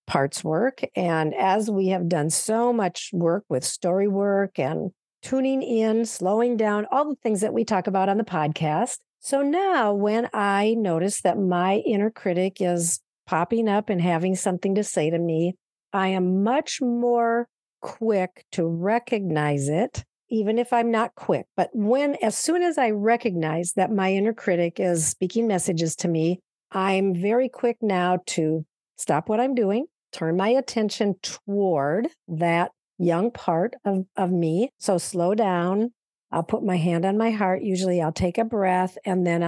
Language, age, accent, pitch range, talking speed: English, 50-69, American, 175-225 Hz, 170 wpm